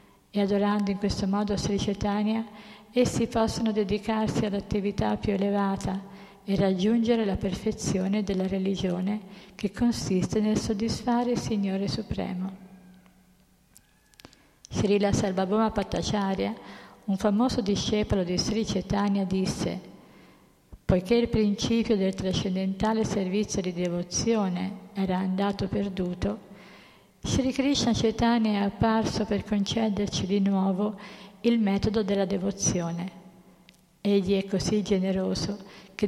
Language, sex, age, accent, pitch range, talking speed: Italian, female, 50-69, native, 190-210 Hz, 110 wpm